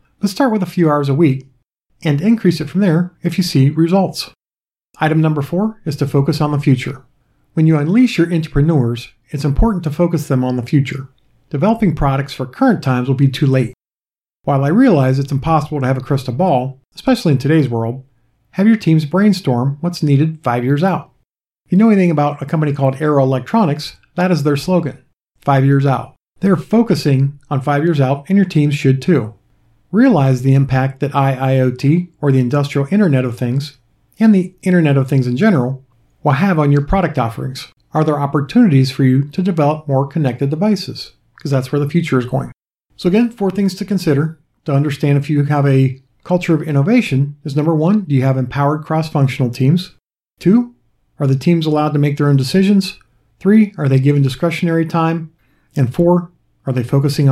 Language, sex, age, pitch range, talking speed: English, male, 50-69, 135-175 Hz, 195 wpm